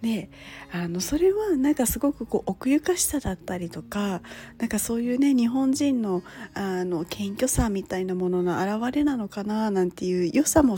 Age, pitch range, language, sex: 40-59, 180-280 Hz, Japanese, female